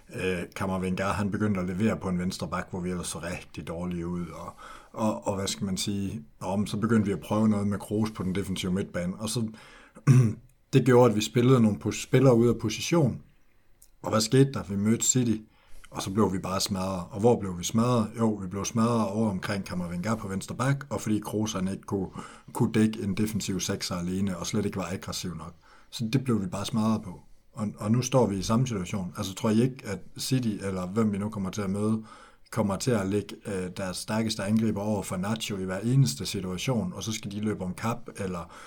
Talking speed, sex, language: 220 wpm, male, Danish